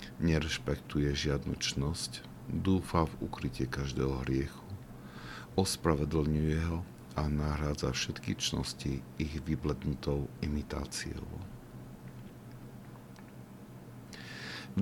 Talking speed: 70 wpm